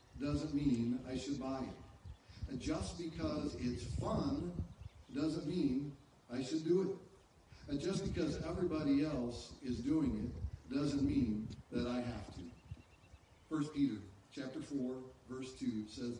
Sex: male